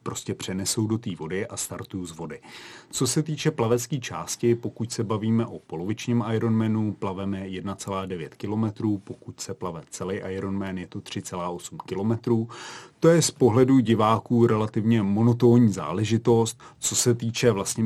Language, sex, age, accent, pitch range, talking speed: Czech, male, 30-49, native, 95-115 Hz, 150 wpm